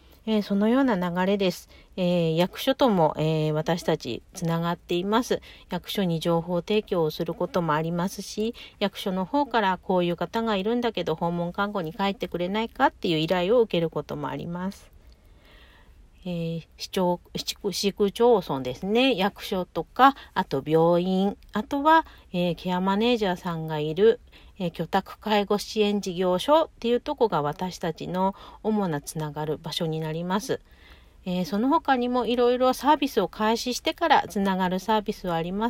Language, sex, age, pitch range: Japanese, female, 40-59, 165-215 Hz